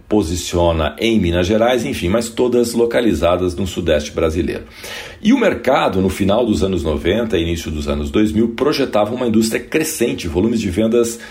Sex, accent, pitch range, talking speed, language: male, Brazilian, 80-110 Hz, 165 wpm, Portuguese